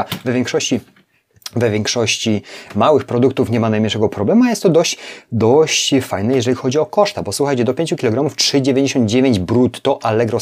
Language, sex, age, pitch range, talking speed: Polish, male, 30-49, 110-135 Hz, 160 wpm